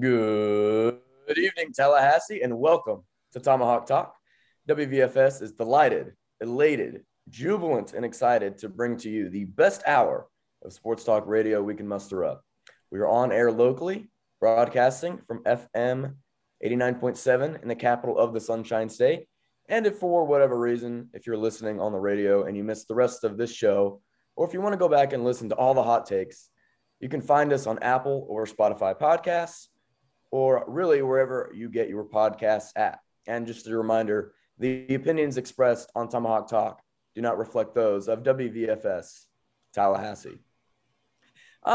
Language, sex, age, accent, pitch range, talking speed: English, male, 20-39, American, 110-135 Hz, 160 wpm